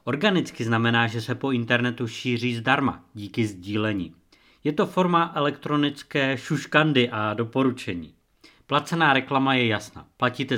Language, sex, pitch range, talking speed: Czech, male, 105-130 Hz, 125 wpm